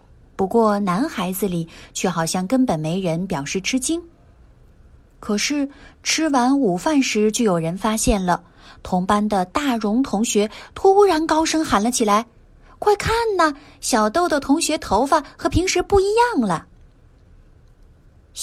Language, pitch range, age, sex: Chinese, 205-315 Hz, 20-39, female